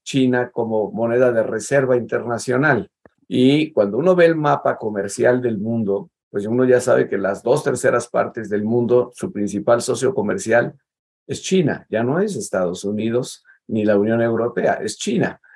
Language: Spanish